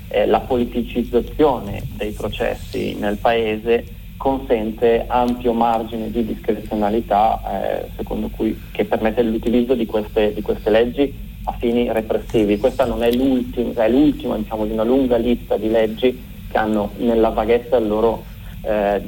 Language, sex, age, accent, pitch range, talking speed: Italian, male, 40-59, native, 105-125 Hz, 140 wpm